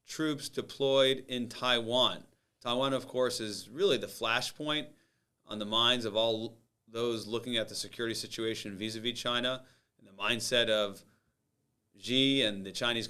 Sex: male